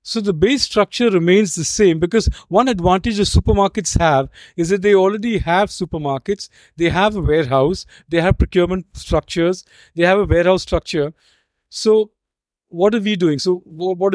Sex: male